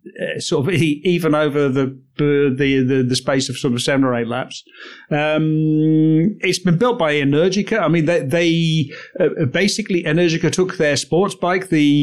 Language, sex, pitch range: English, male, 135-160 Hz